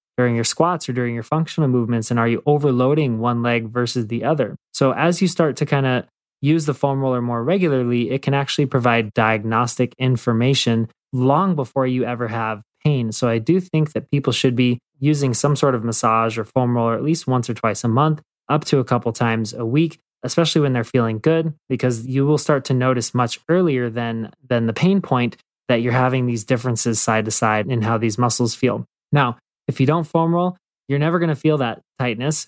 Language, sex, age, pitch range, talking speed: English, male, 20-39, 120-145 Hz, 215 wpm